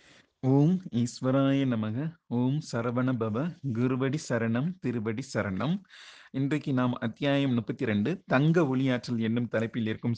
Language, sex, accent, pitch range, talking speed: Tamil, male, native, 115-150 Hz, 120 wpm